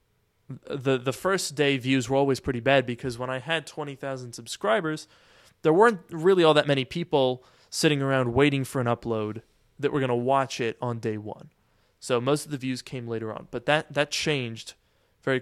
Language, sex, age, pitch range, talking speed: English, male, 20-39, 120-150 Hz, 195 wpm